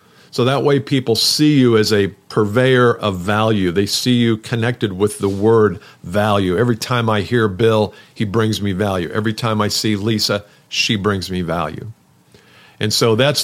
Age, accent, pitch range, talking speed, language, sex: 50-69, American, 105-130 Hz, 180 wpm, English, male